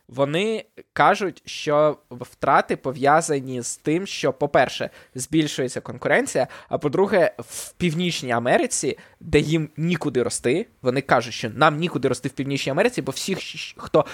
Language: Ukrainian